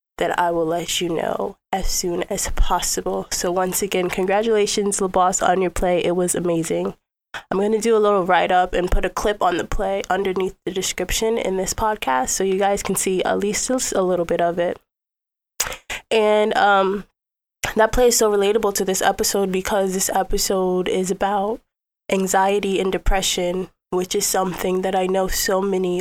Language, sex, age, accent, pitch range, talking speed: English, female, 20-39, American, 180-200 Hz, 180 wpm